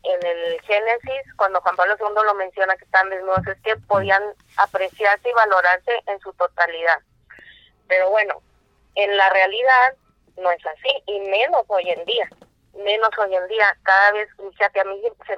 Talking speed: 175 wpm